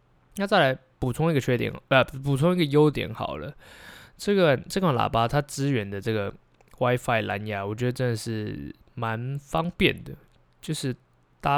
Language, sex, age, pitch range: Chinese, male, 20-39, 110-145 Hz